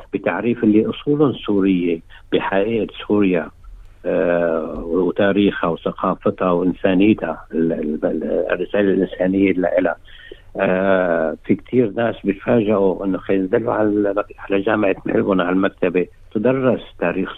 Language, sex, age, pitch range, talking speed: Arabic, male, 60-79, 90-105 Hz, 100 wpm